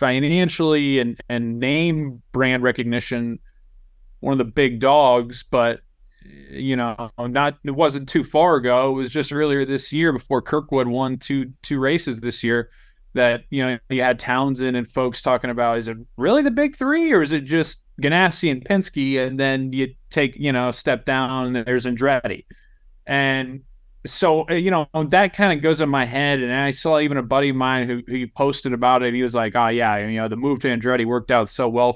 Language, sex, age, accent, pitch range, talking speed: English, male, 30-49, American, 120-150 Hz, 205 wpm